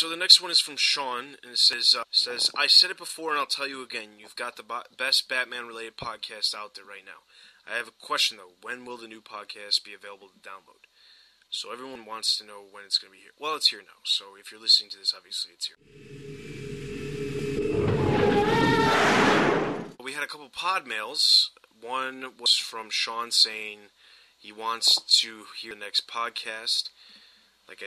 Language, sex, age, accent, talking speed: English, male, 20-39, American, 195 wpm